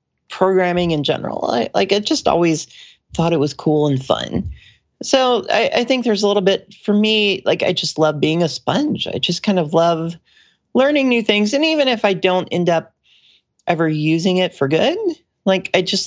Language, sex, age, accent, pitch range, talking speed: English, male, 40-59, American, 160-210 Hz, 200 wpm